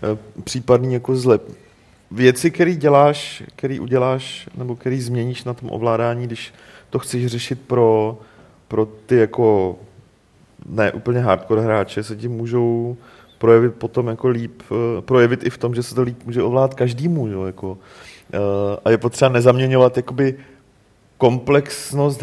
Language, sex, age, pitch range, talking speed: Czech, male, 30-49, 115-130 Hz, 135 wpm